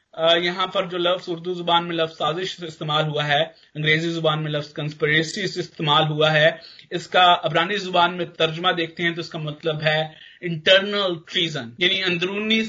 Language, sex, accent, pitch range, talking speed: Hindi, male, native, 160-185 Hz, 170 wpm